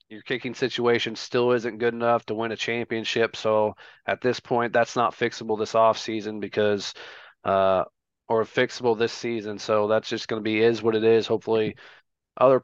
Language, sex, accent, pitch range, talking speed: English, male, American, 110-120 Hz, 185 wpm